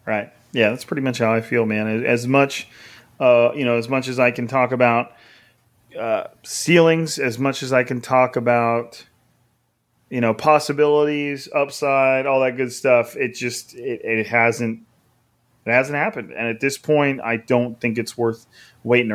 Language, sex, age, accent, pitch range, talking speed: English, male, 30-49, American, 115-140 Hz, 175 wpm